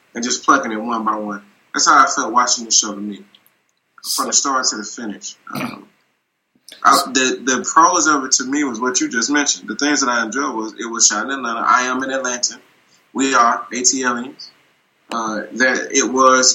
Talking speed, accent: 210 wpm, American